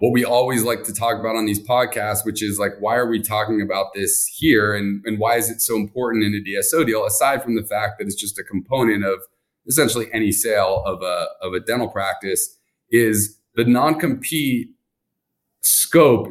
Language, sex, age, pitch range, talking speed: English, male, 30-49, 105-125 Hz, 200 wpm